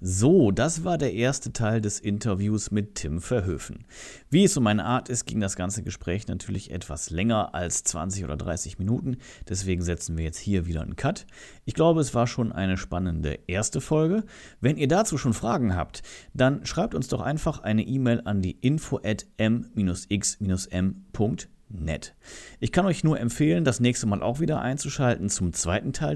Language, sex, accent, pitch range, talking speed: German, male, German, 95-130 Hz, 180 wpm